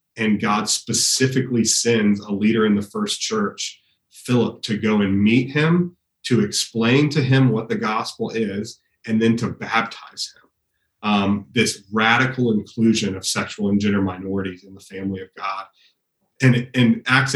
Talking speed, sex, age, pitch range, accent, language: 160 wpm, male, 30-49, 105-130 Hz, American, Danish